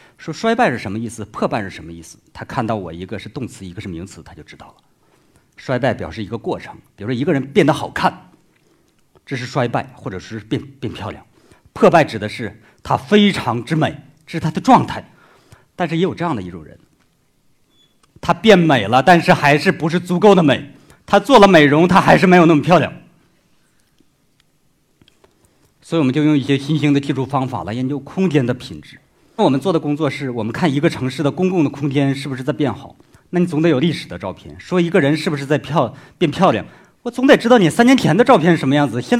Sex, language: male, Chinese